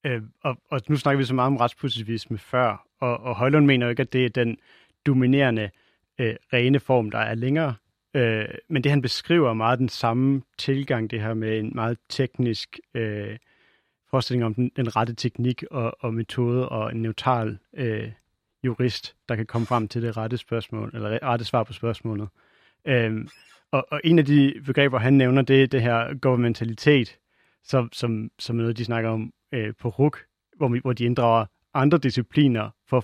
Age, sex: 40-59, male